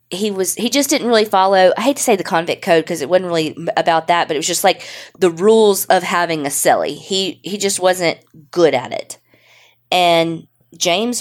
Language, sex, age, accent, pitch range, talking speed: English, female, 20-39, American, 155-195 Hz, 215 wpm